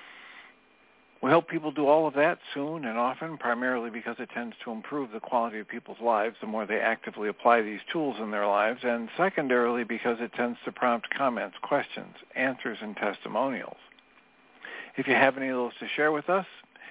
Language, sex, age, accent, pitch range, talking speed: English, male, 60-79, American, 115-145 Hz, 190 wpm